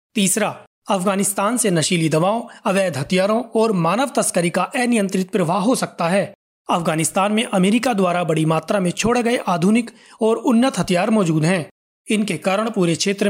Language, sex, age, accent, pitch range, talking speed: Hindi, male, 30-49, native, 170-225 Hz, 160 wpm